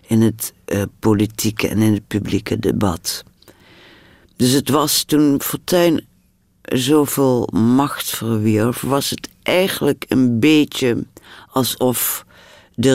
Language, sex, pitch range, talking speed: Dutch, female, 95-115 Hz, 110 wpm